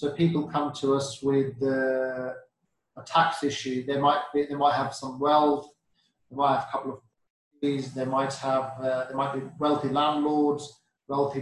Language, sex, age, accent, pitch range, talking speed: English, male, 30-49, British, 135-155 Hz, 185 wpm